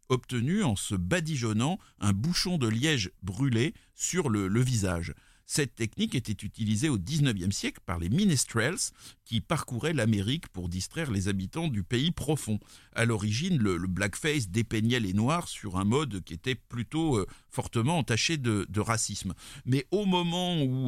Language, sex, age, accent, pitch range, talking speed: French, male, 50-69, French, 110-155 Hz, 165 wpm